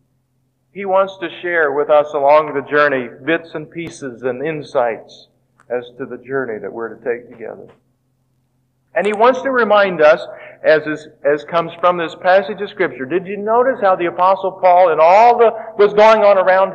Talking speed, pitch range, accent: 185 wpm, 140-210 Hz, American